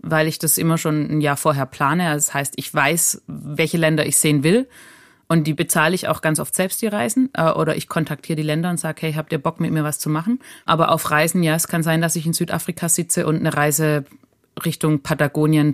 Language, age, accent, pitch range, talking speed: German, 30-49, German, 140-160 Hz, 235 wpm